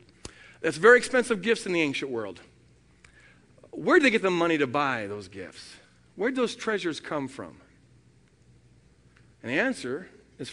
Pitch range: 165-235 Hz